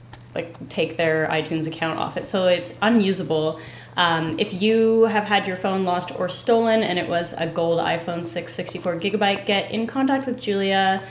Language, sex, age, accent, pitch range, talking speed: English, female, 10-29, American, 165-200 Hz, 185 wpm